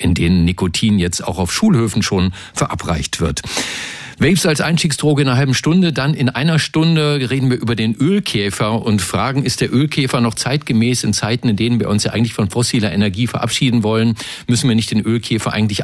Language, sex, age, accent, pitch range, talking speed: German, male, 50-69, German, 100-130 Hz, 195 wpm